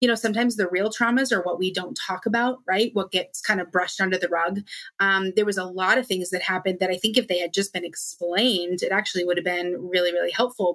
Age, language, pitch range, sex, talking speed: 30-49, English, 180-200 Hz, female, 265 wpm